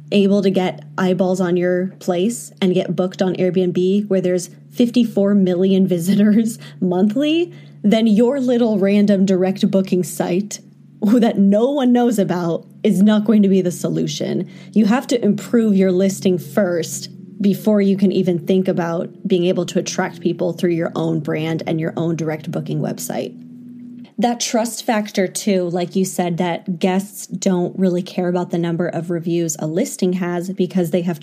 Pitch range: 180-210 Hz